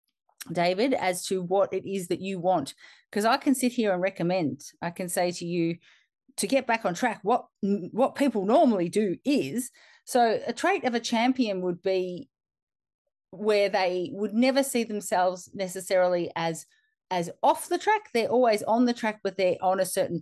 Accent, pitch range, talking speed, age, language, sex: Australian, 185-240 Hz, 185 wpm, 30-49, English, female